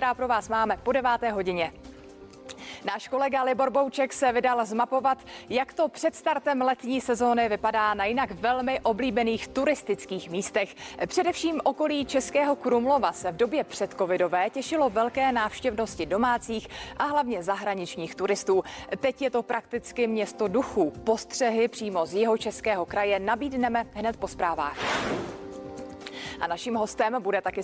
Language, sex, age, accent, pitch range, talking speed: Czech, female, 30-49, native, 205-265 Hz, 140 wpm